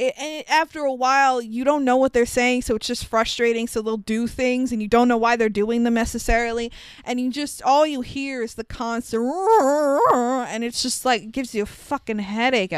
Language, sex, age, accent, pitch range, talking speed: English, female, 20-39, American, 225-275 Hz, 210 wpm